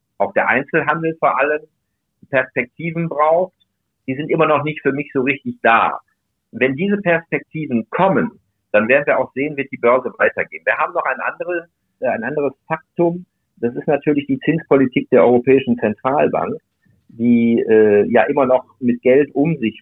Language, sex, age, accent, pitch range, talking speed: German, male, 50-69, German, 120-150 Hz, 165 wpm